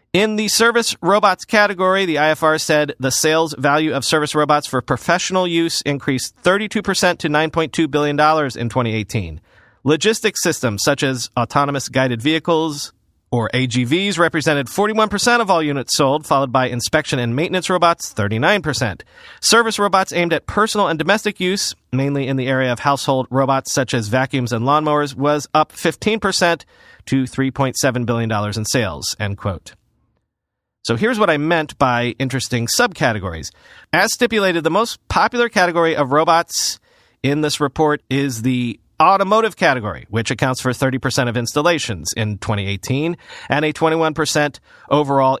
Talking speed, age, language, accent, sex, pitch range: 145 wpm, 40-59, English, American, male, 130-175 Hz